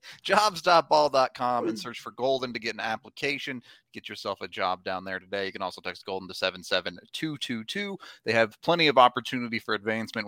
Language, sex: English, male